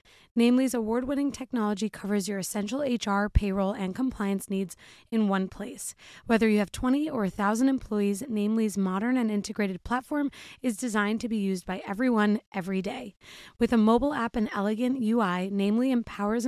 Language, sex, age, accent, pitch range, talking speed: English, female, 20-39, American, 195-240 Hz, 160 wpm